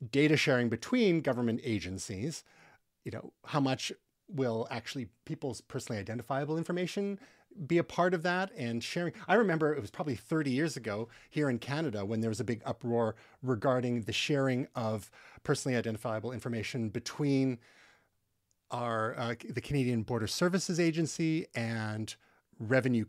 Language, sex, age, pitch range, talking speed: English, male, 40-59, 115-155 Hz, 145 wpm